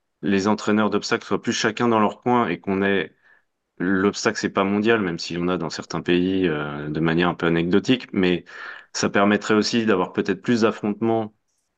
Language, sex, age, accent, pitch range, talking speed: French, male, 20-39, French, 85-100 Hz, 190 wpm